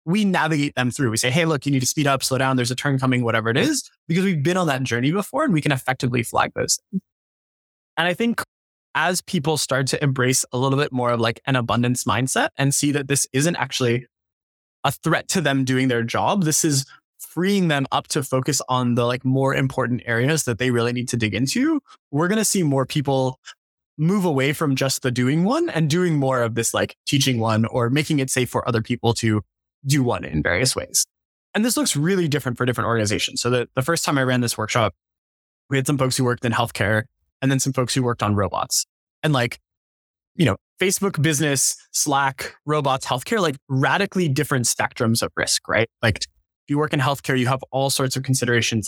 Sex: male